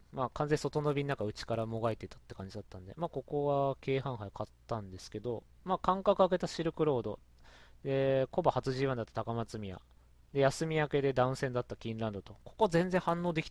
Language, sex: Japanese, male